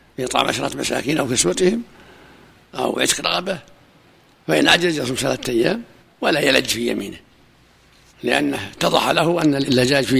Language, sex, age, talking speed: Arabic, male, 60-79, 140 wpm